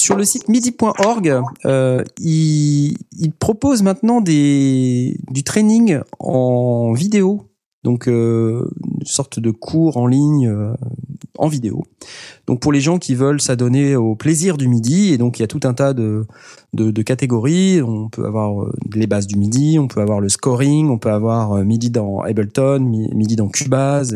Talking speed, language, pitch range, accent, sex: 165 wpm, French, 115-165 Hz, French, male